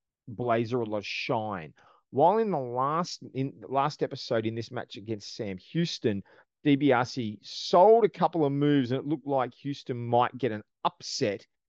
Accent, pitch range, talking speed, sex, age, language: Australian, 115-155 Hz, 175 wpm, male, 30-49, English